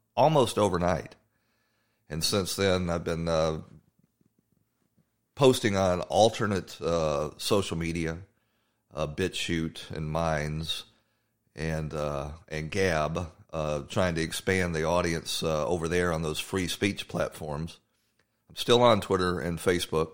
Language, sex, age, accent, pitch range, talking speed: English, male, 40-59, American, 80-100 Hz, 125 wpm